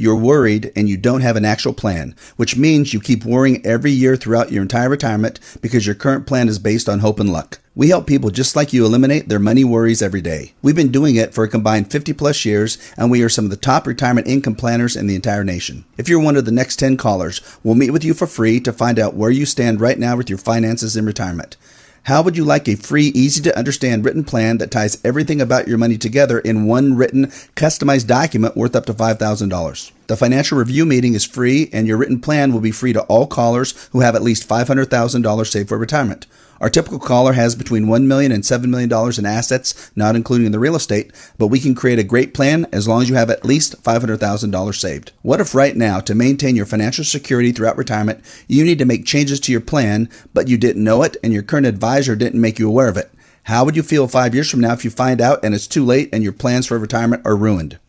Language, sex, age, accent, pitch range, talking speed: English, male, 40-59, American, 110-135 Hz, 240 wpm